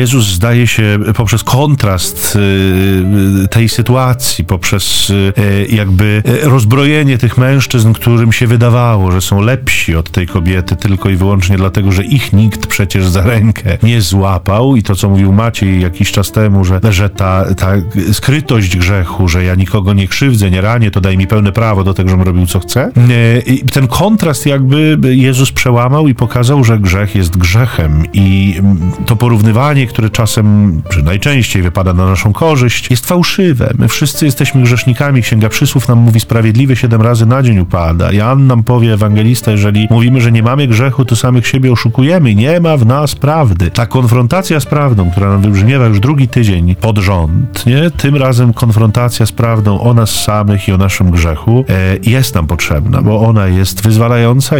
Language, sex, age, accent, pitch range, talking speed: Polish, male, 40-59, native, 95-125 Hz, 170 wpm